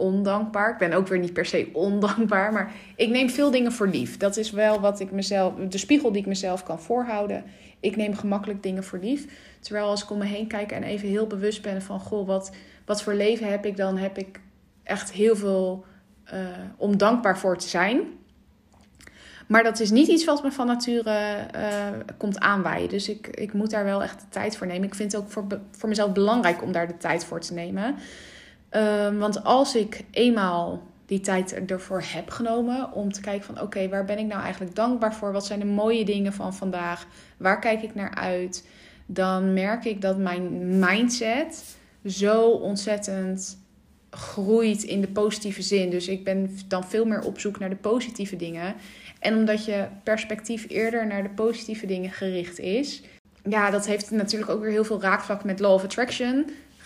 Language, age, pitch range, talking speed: Dutch, 20-39, 190-215 Hz, 200 wpm